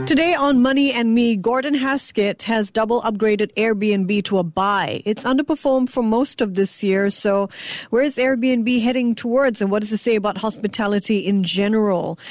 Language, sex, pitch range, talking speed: English, female, 195-250 Hz, 170 wpm